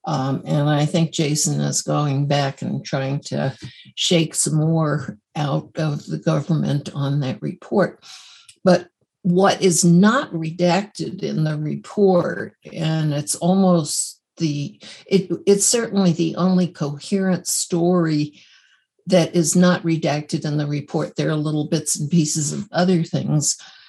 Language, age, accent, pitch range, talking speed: English, 60-79, American, 155-185 Hz, 140 wpm